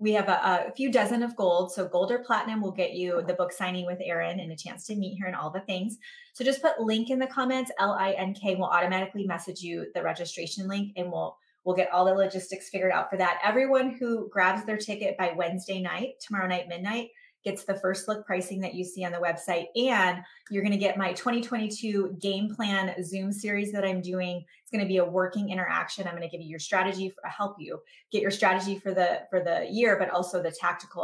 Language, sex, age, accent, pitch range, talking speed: English, female, 20-39, American, 185-225 Hz, 235 wpm